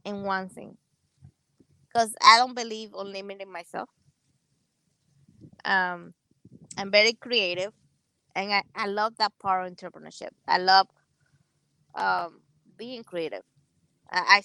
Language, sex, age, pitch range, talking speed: English, female, 20-39, 170-220 Hz, 115 wpm